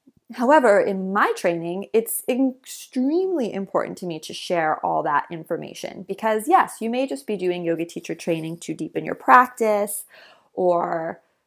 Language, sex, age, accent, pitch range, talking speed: English, female, 30-49, American, 180-225 Hz, 150 wpm